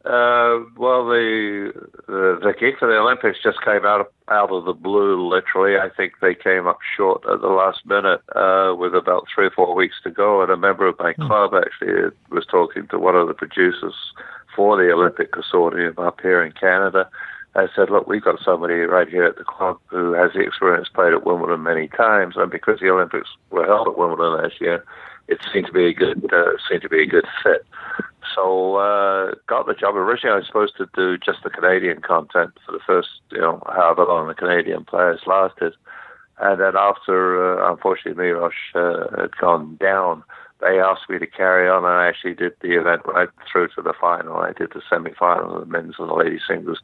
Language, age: English, 50-69